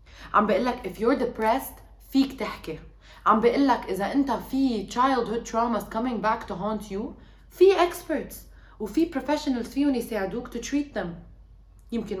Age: 20-39